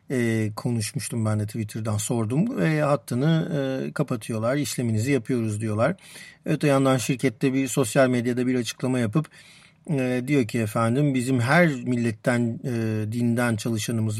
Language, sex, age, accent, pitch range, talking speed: Turkish, male, 50-69, native, 120-155 Hz, 135 wpm